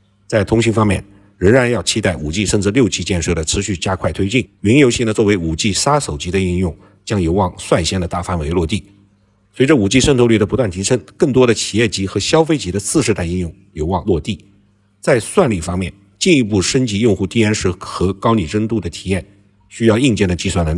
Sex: male